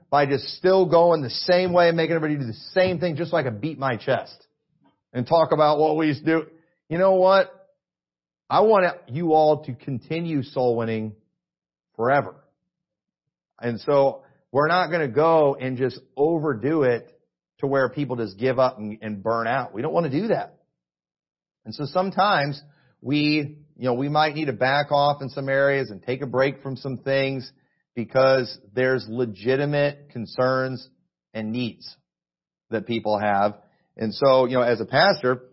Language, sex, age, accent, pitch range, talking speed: English, male, 40-59, American, 125-160 Hz, 175 wpm